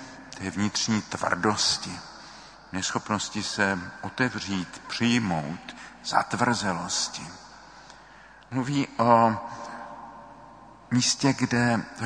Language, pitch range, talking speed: Czech, 105-125 Hz, 65 wpm